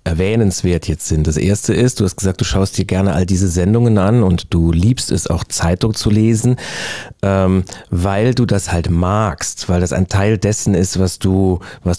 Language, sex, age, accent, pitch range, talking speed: German, male, 40-59, German, 95-130 Hz, 200 wpm